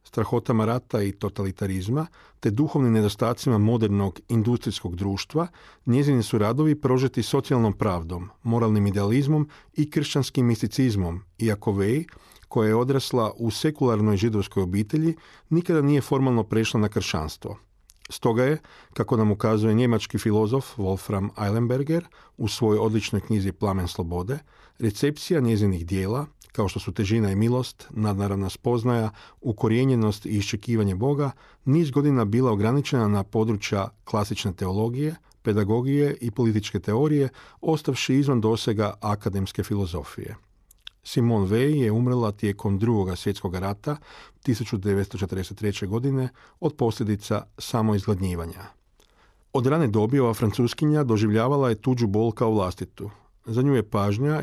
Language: Croatian